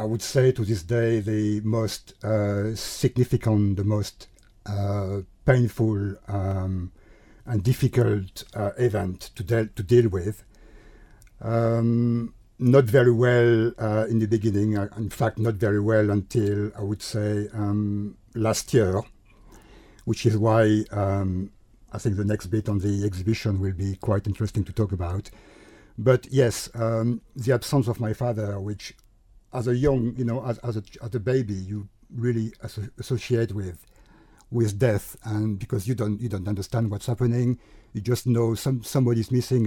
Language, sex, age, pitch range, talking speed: English, male, 60-79, 105-120 Hz, 160 wpm